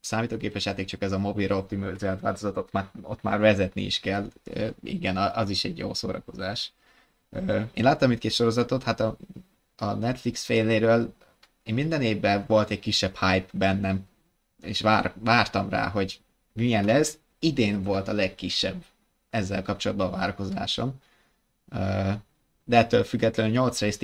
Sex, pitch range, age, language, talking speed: male, 95-115 Hz, 20-39, Hungarian, 145 wpm